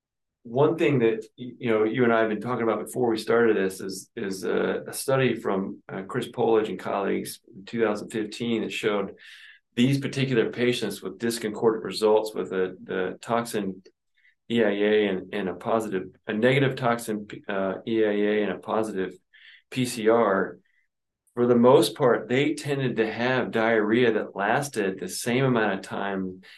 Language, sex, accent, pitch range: English, male, American, 95-115 Hz